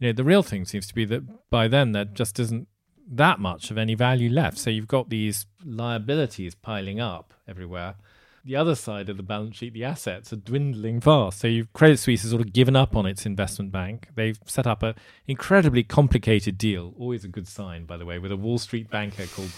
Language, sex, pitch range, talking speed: English, male, 100-120 Hz, 220 wpm